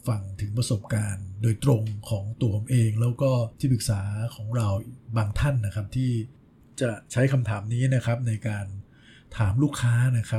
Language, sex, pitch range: Thai, male, 105-125 Hz